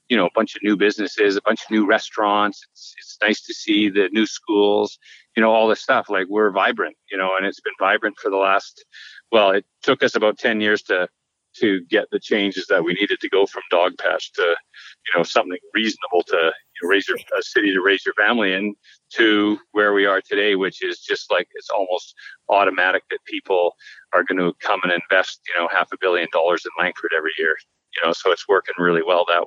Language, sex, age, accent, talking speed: English, male, 40-59, American, 230 wpm